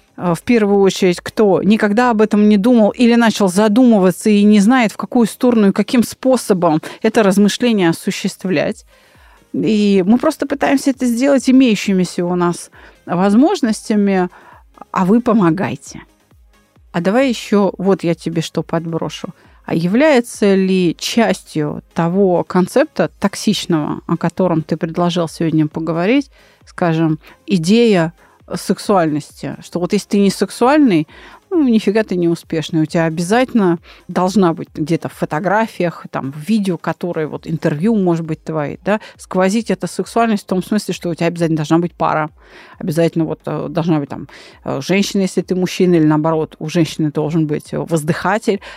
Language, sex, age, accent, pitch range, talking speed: Russian, female, 30-49, native, 165-220 Hz, 145 wpm